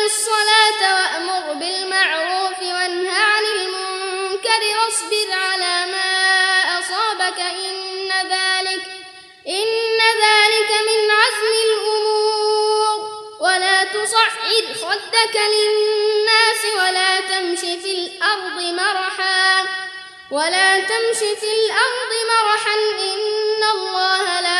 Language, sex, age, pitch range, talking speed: Arabic, female, 20-39, 370-430 Hz, 85 wpm